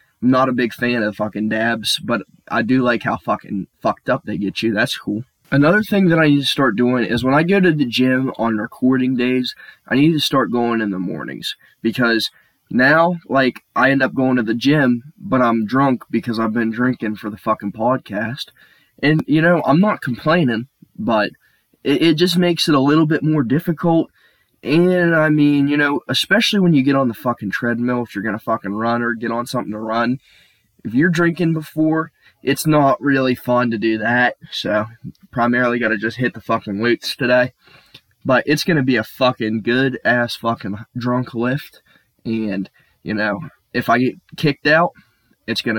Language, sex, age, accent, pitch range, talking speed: English, male, 20-39, American, 115-145 Hz, 200 wpm